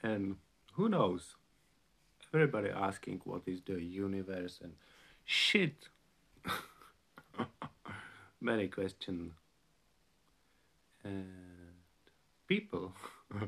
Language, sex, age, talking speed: Czech, male, 50-69, 60 wpm